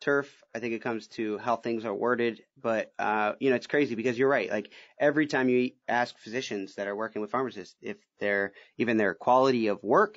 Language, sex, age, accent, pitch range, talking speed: English, male, 30-49, American, 110-135 Hz, 220 wpm